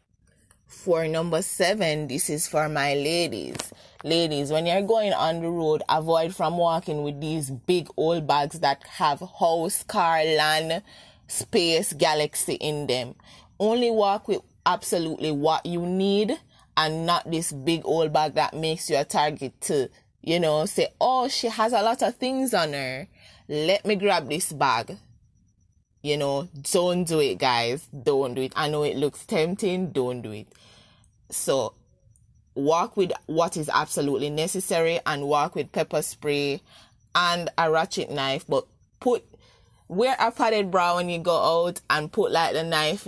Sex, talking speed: female, 160 wpm